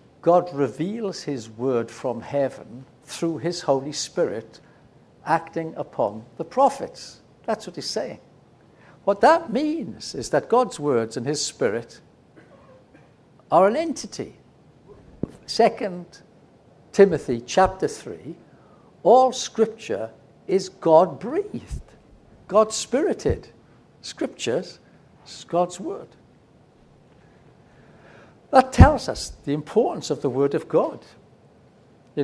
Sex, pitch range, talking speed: male, 115-165 Hz, 100 wpm